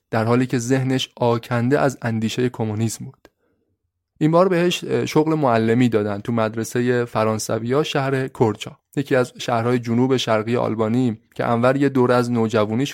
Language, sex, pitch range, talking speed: Persian, male, 115-150 Hz, 150 wpm